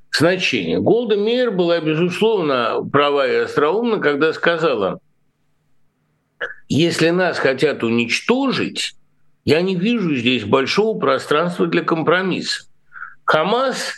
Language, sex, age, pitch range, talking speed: Russian, male, 60-79, 155-230 Hz, 95 wpm